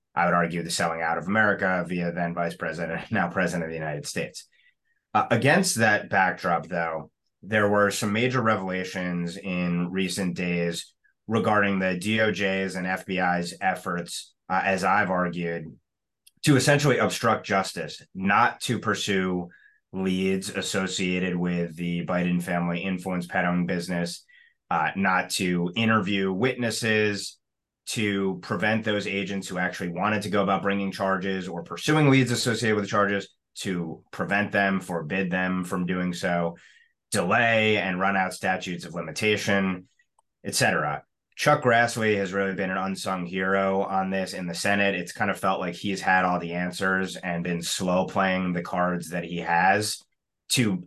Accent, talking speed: American, 155 wpm